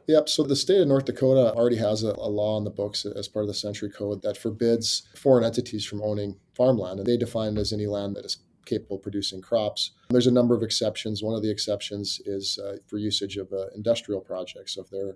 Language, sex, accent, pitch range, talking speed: English, male, American, 100-115 Hz, 240 wpm